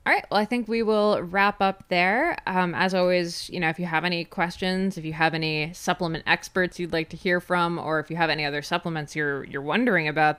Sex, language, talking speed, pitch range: female, English, 245 wpm, 155-195 Hz